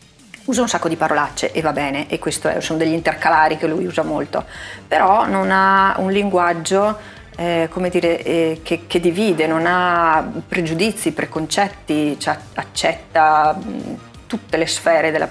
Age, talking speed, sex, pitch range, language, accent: 30-49, 160 wpm, female, 160-195 Hz, Italian, native